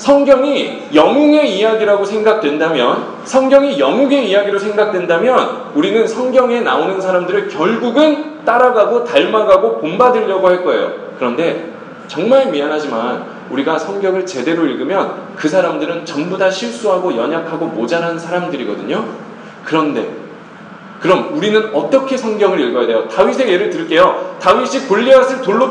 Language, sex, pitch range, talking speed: English, male, 205-280 Hz, 105 wpm